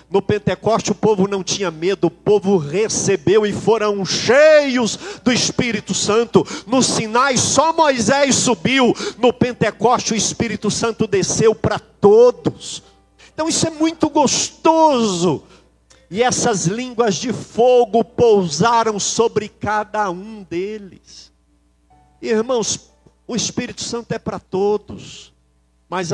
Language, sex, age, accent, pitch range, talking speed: Portuguese, male, 50-69, Brazilian, 185-245 Hz, 120 wpm